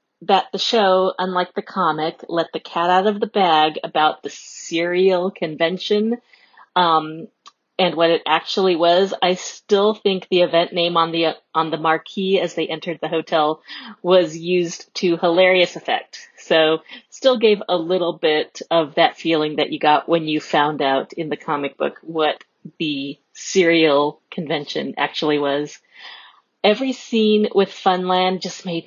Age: 40-59